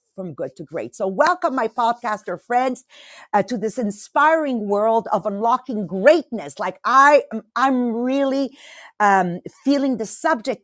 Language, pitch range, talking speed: English, 200-255 Hz, 135 wpm